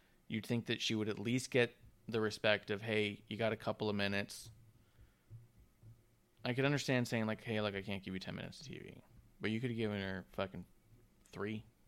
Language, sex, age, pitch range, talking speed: English, male, 20-39, 105-125 Hz, 205 wpm